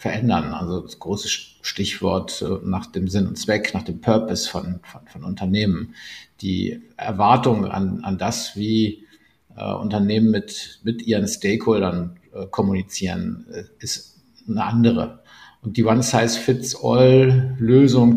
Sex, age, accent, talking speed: male, 50-69, German, 125 wpm